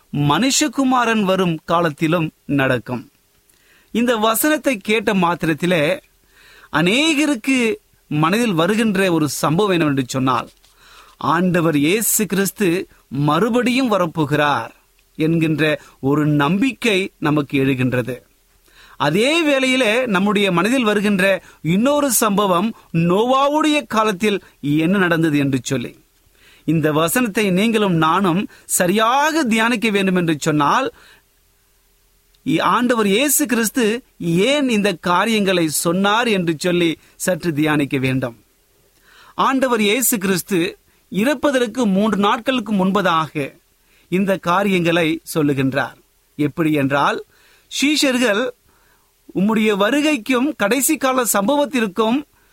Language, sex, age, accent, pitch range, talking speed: Tamil, male, 30-49, native, 160-240 Hz, 85 wpm